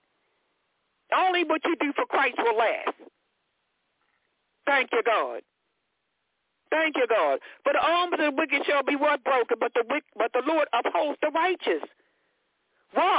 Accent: American